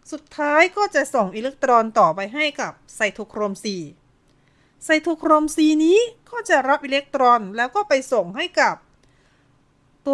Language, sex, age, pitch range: Thai, female, 30-49, 210-290 Hz